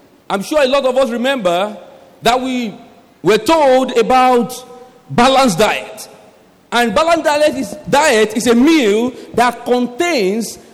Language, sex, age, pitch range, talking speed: English, male, 50-69, 235-315 Hz, 130 wpm